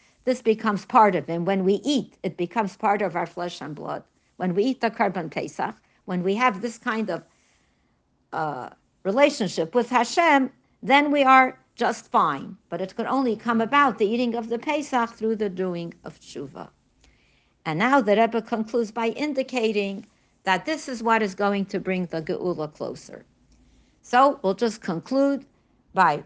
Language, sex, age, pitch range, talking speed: English, female, 60-79, 180-240 Hz, 175 wpm